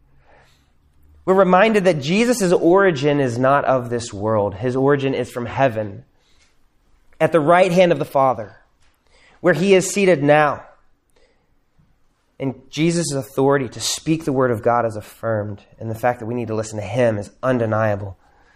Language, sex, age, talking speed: English, male, 20-39, 160 wpm